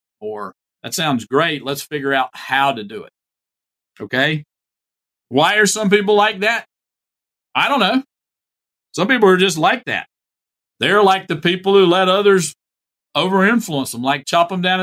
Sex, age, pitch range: male, 40-59, 120-170 Hz